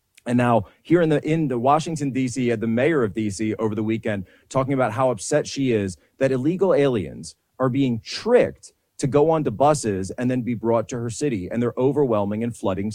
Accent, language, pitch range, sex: American, English, 105-130 Hz, male